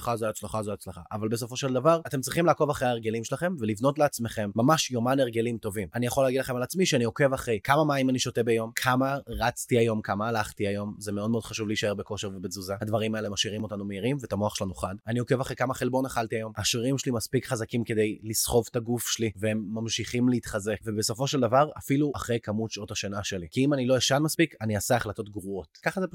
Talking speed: 160 wpm